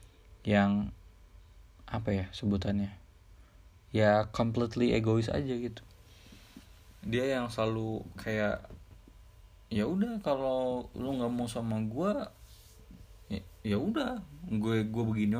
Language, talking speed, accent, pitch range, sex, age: Indonesian, 110 wpm, native, 95-110 Hz, male, 20-39